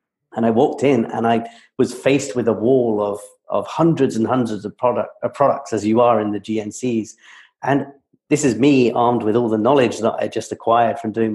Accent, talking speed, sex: British, 215 wpm, male